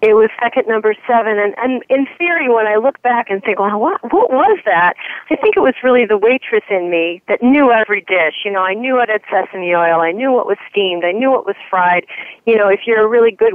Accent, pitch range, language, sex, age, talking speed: American, 170-220 Hz, English, female, 40-59, 255 wpm